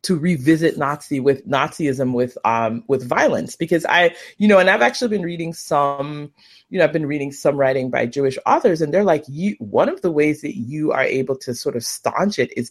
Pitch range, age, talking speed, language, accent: 135-220 Hz, 30-49, 220 wpm, English, American